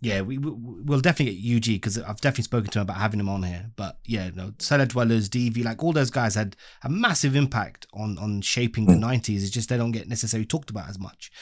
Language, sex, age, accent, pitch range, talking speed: English, male, 30-49, British, 110-145 Hz, 250 wpm